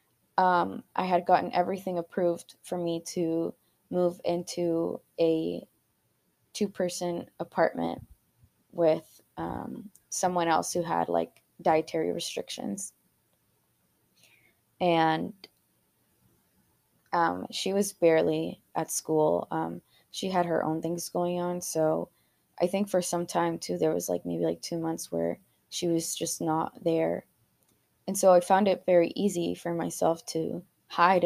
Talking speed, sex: 130 wpm, female